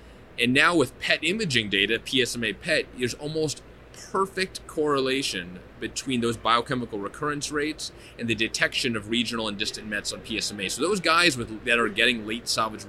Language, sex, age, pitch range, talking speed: English, male, 30-49, 110-140 Hz, 170 wpm